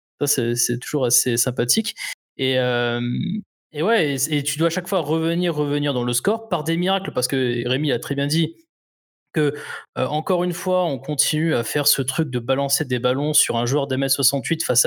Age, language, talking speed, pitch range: 20-39, French, 205 wpm, 125-160 Hz